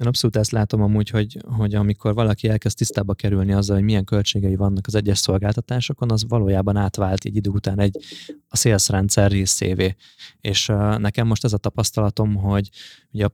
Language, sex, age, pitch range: Hungarian, male, 20-39, 100-110 Hz